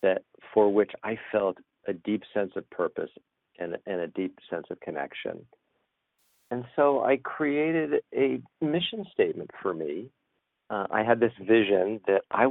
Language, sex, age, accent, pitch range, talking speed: English, male, 50-69, American, 95-130 Hz, 160 wpm